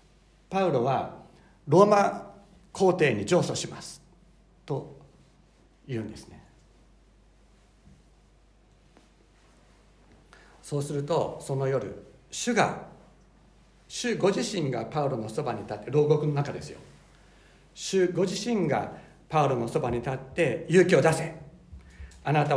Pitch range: 125-160 Hz